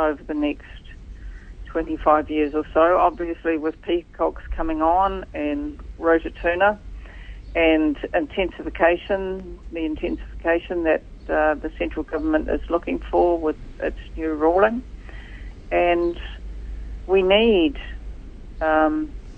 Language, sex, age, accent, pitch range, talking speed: English, female, 50-69, Australian, 145-195 Hz, 105 wpm